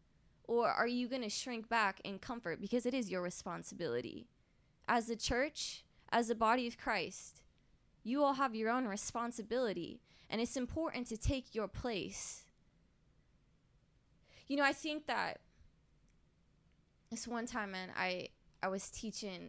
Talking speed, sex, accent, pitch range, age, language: 150 wpm, female, American, 190-240 Hz, 20-39, English